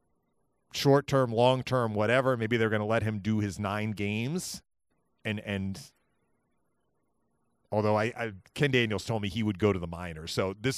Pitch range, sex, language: 95-125 Hz, male, English